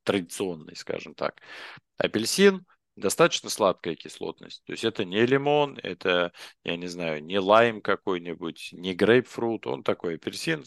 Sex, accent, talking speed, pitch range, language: male, native, 135 wpm, 90-120 Hz, Russian